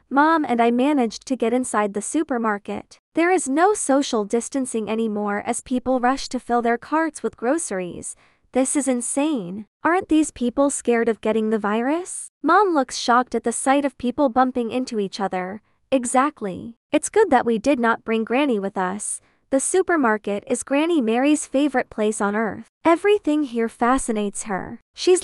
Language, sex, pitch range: English, female, 220-290 Hz